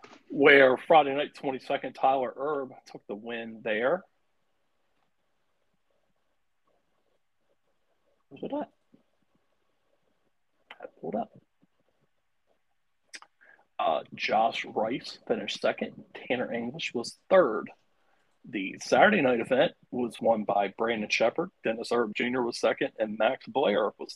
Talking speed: 100 wpm